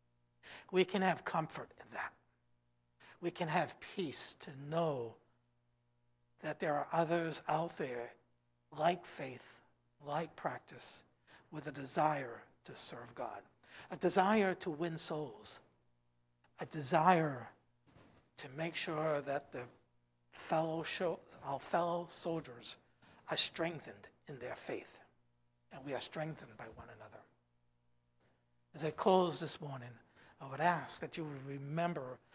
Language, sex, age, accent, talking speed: English, male, 60-79, American, 130 wpm